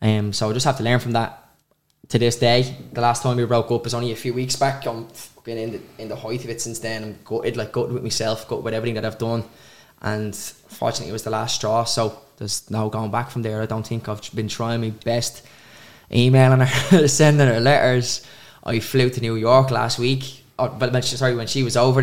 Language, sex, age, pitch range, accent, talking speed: English, male, 10-29, 110-125 Hz, Irish, 250 wpm